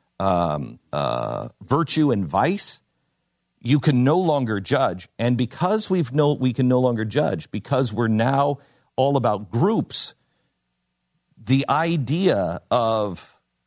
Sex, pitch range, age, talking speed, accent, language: male, 110-175 Hz, 50-69, 125 wpm, American, English